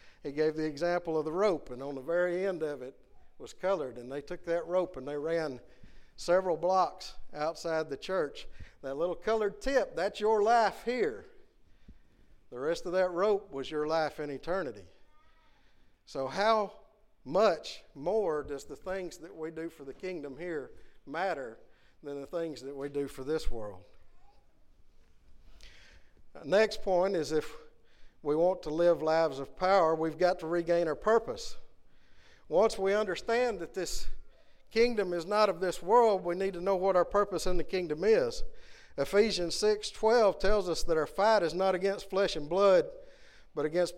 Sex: male